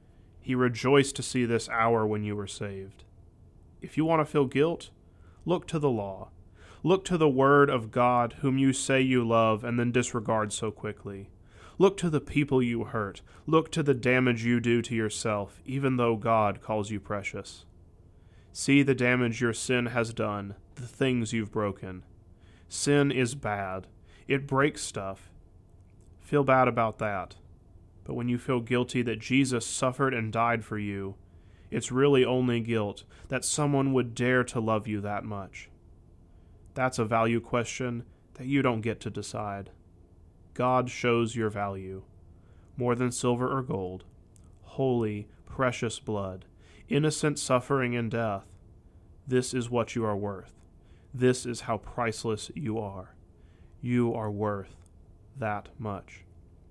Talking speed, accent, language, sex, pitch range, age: 155 wpm, American, English, male, 95-125 Hz, 30-49